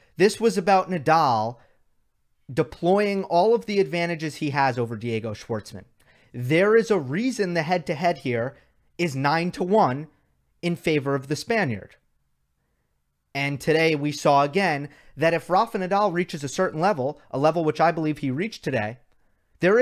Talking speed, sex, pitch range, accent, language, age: 155 wpm, male, 130-175 Hz, American, English, 30-49